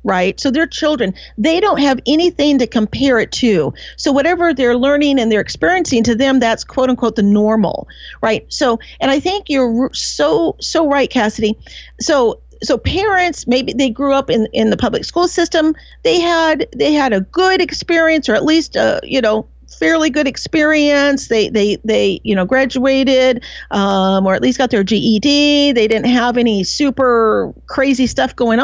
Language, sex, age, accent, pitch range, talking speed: English, female, 50-69, American, 215-275 Hz, 180 wpm